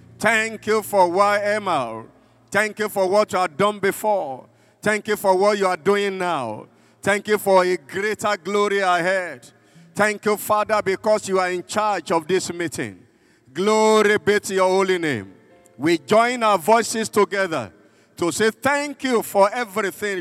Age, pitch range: 50-69, 170-210 Hz